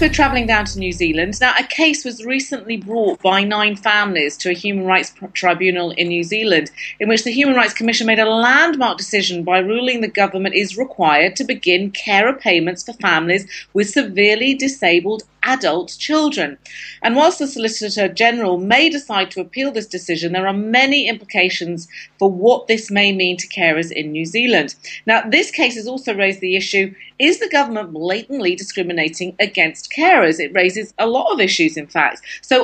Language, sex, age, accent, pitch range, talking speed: English, female, 40-59, British, 185-250 Hz, 185 wpm